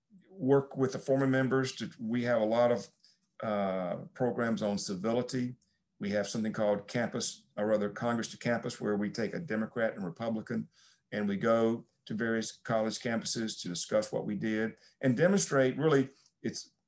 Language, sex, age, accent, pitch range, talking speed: English, male, 50-69, American, 105-130 Hz, 165 wpm